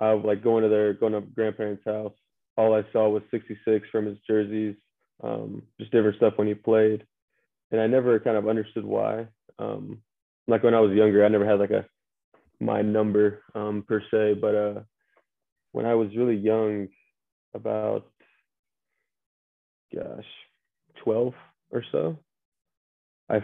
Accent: American